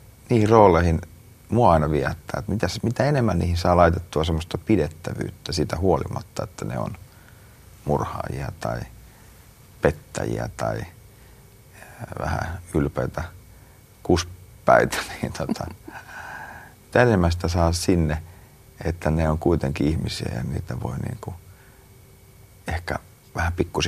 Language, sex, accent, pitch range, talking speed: Finnish, male, native, 75-100 Hz, 110 wpm